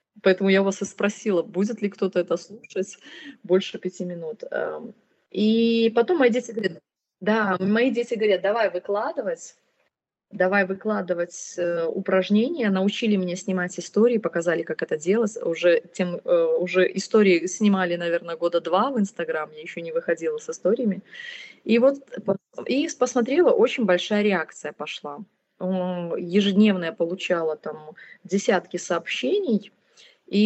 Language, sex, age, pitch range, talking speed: Russian, female, 20-39, 180-225 Hz, 130 wpm